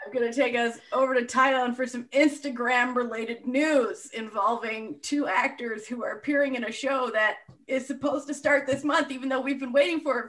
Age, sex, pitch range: 30-49, female, 235-285 Hz